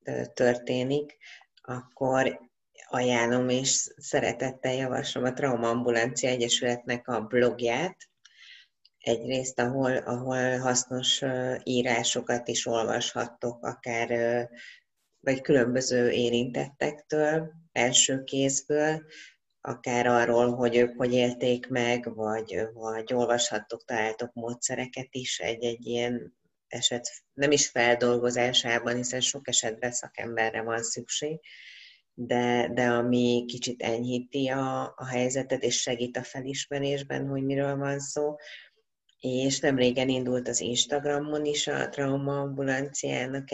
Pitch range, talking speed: 120-135 Hz, 105 wpm